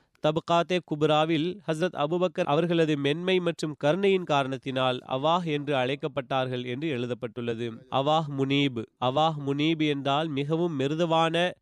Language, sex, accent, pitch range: Tamil, male, native, 135-170 Hz